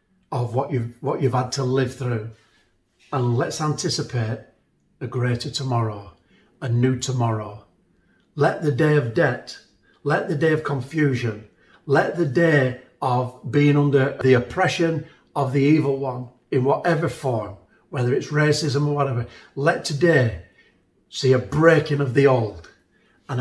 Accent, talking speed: British, 145 wpm